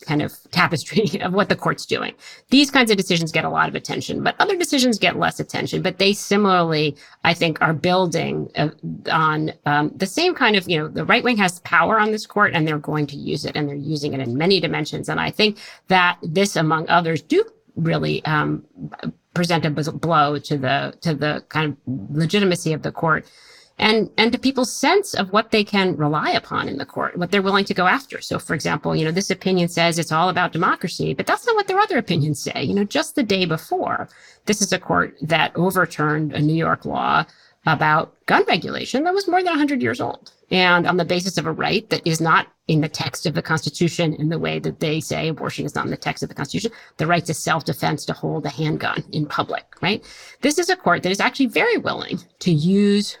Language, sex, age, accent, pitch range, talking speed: English, female, 40-59, American, 155-210 Hz, 225 wpm